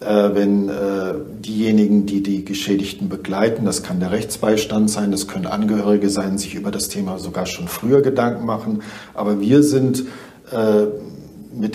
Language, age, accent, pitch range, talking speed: German, 50-69, German, 100-120 Hz, 160 wpm